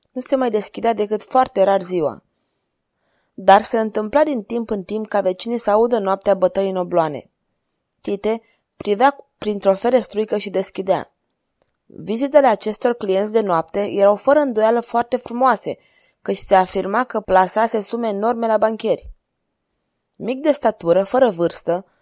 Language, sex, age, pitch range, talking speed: Romanian, female, 20-39, 190-240 Hz, 145 wpm